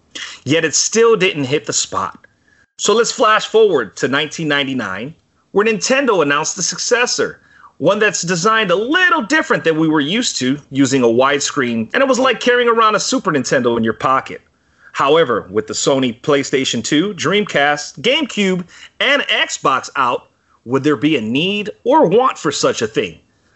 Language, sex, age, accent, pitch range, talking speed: English, male, 30-49, American, 140-235 Hz, 170 wpm